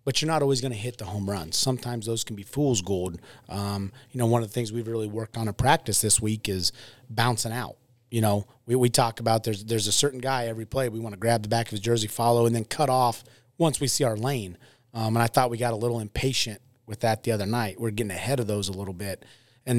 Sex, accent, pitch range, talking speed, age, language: male, American, 110-125 Hz, 270 wpm, 30-49, English